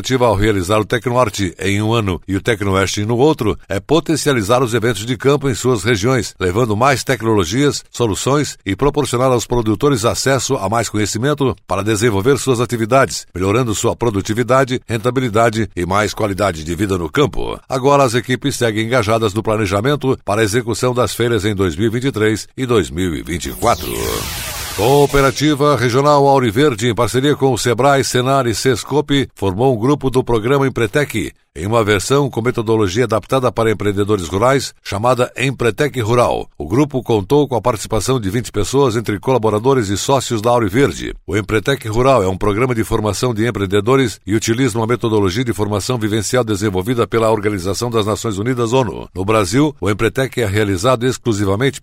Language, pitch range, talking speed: Portuguese, 105-130 Hz, 165 wpm